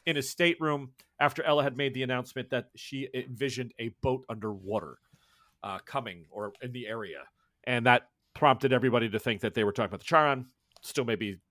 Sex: male